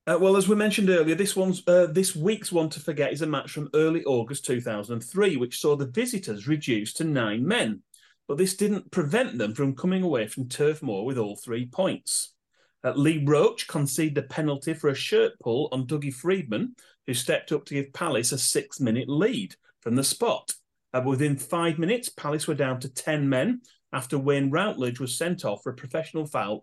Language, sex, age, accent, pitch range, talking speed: English, male, 40-59, British, 130-165 Hz, 200 wpm